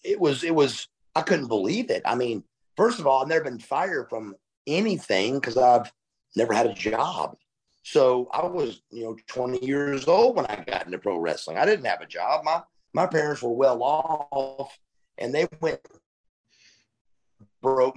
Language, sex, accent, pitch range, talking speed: English, male, American, 125-180 Hz, 180 wpm